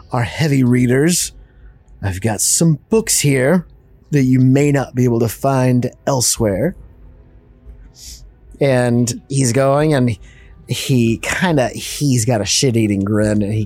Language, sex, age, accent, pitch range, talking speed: English, male, 30-49, American, 100-130 Hz, 135 wpm